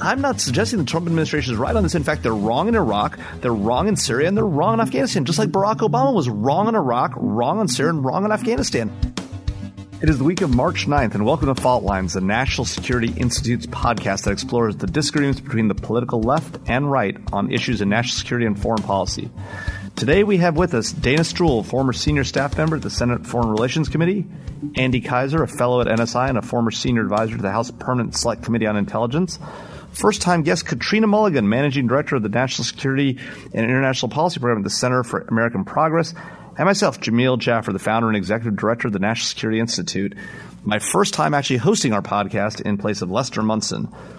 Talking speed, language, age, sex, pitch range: 215 wpm, English, 30-49, male, 110-150 Hz